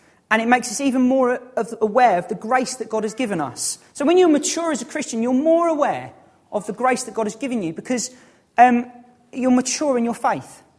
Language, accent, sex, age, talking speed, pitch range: English, British, male, 40-59, 220 wpm, 210-265 Hz